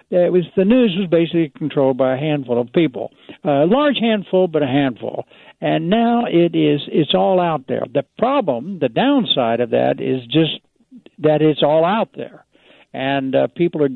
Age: 60-79